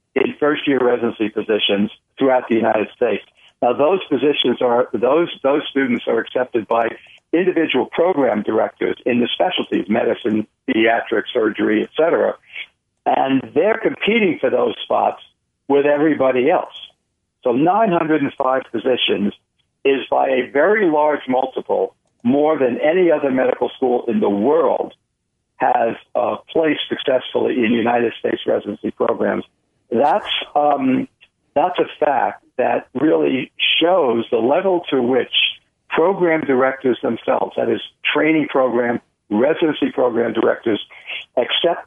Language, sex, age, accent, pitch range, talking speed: English, male, 60-79, American, 120-155 Hz, 125 wpm